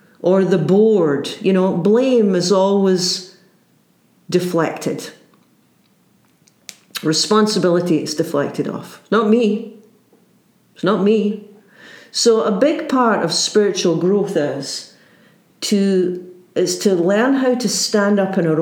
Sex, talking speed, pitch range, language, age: female, 120 wpm, 170-215 Hz, English, 50-69